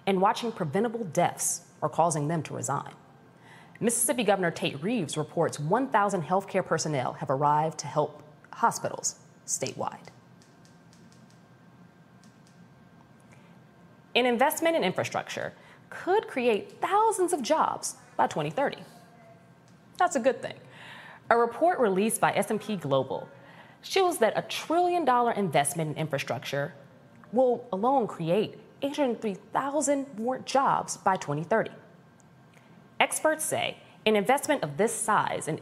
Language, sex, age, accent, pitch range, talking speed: English, female, 30-49, American, 160-250 Hz, 115 wpm